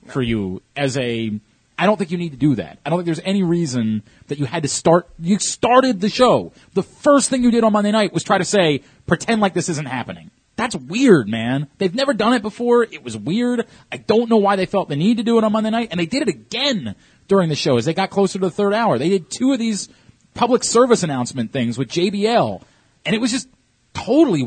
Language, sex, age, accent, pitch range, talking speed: English, male, 30-49, American, 135-215 Hz, 250 wpm